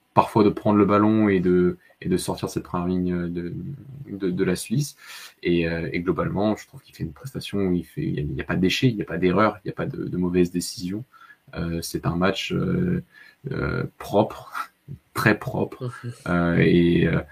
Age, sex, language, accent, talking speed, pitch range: 20-39, male, French, French, 210 wpm, 90-100 Hz